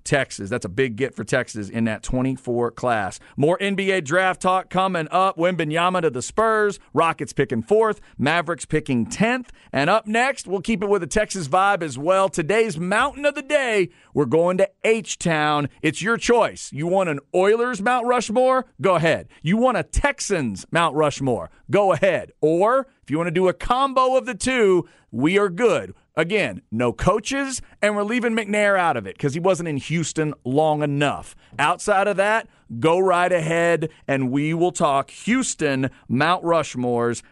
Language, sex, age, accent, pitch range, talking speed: English, male, 40-59, American, 145-200 Hz, 180 wpm